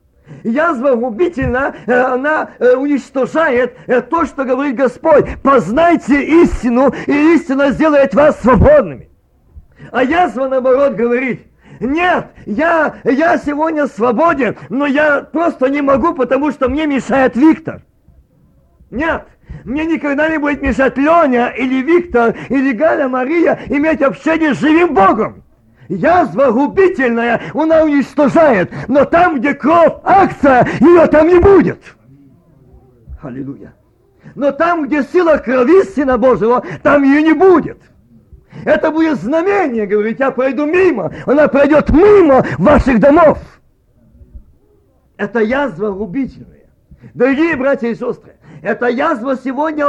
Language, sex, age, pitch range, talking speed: Russian, male, 50-69, 250-315 Hz, 120 wpm